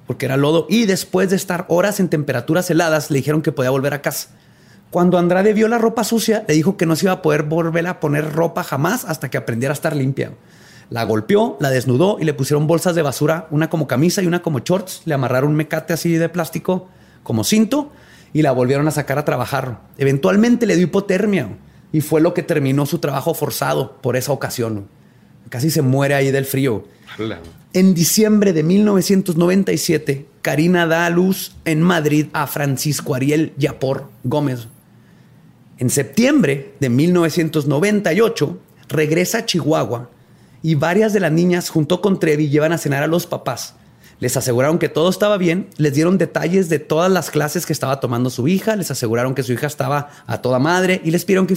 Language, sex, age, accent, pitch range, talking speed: Spanish, male, 30-49, Mexican, 140-175 Hz, 190 wpm